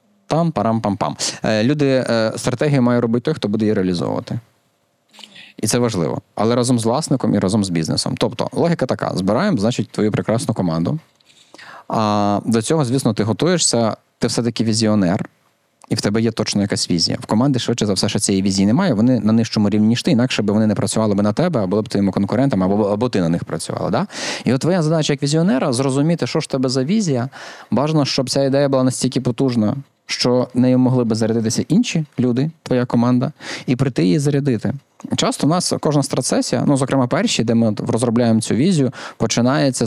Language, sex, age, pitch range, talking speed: Ukrainian, male, 20-39, 110-150 Hz, 195 wpm